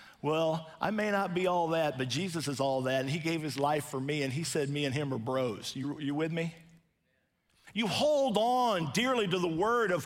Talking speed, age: 235 wpm, 50-69